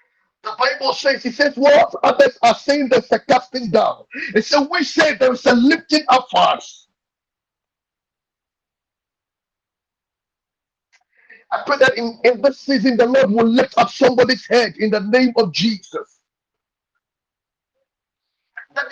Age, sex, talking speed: 50-69, male, 135 wpm